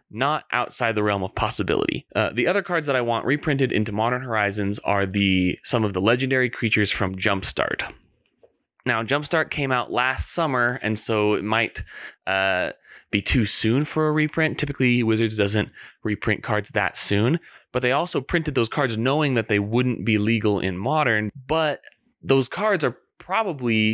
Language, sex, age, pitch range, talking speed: English, male, 20-39, 105-130 Hz, 175 wpm